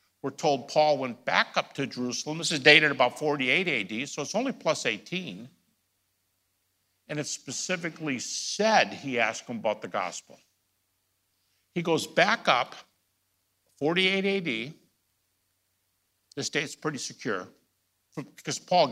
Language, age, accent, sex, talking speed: English, 60-79, American, male, 130 wpm